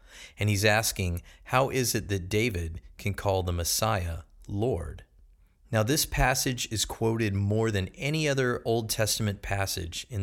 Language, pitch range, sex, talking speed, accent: English, 85-110 Hz, male, 155 wpm, American